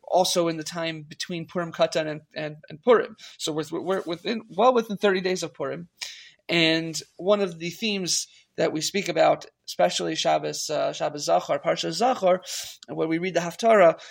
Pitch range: 155-200 Hz